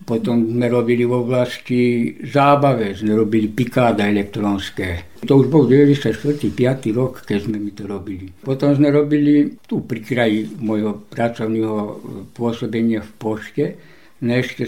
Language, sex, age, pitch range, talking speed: Slovak, male, 60-79, 115-145 Hz, 130 wpm